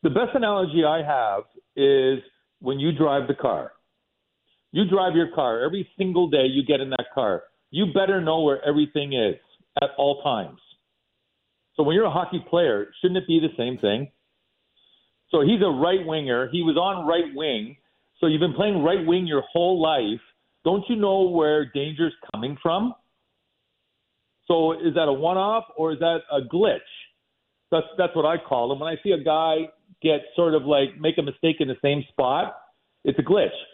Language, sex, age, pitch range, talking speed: English, male, 50-69, 145-185 Hz, 185 wpm